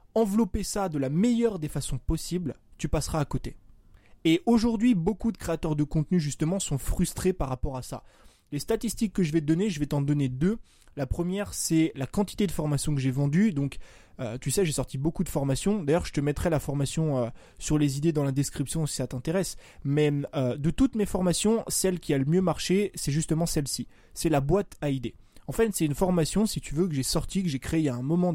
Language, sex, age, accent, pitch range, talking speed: French, male, 20-39, French, 140-185 Hz, 235 wpm